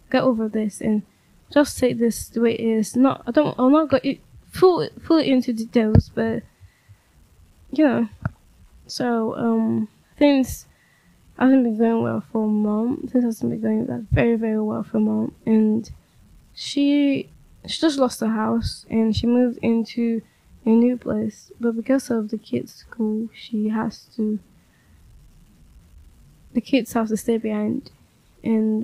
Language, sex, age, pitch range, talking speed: English, female, 10-29, 210-240 Hz, 155 wpm